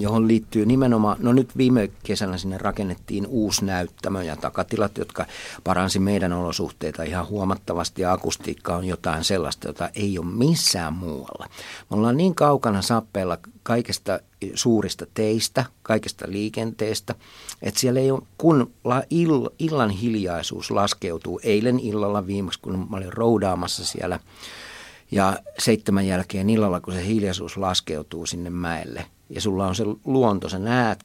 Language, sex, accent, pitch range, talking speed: Finnish, male, native, 90-125 Hz, 135 wpm